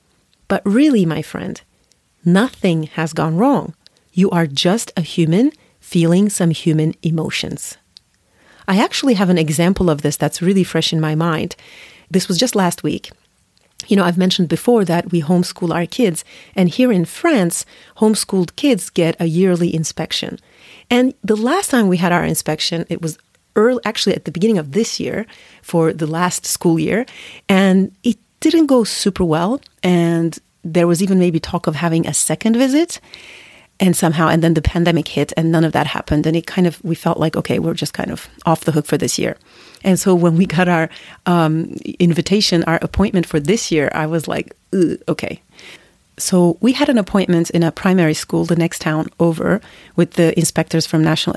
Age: 40-59